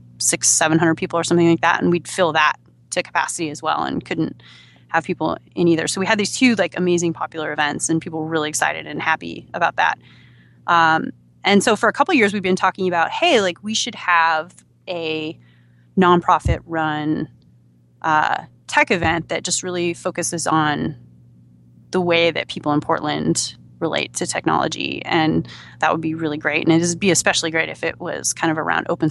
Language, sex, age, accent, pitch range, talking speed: English, female, 30-49, American, 150-180 Hz, 200 wpm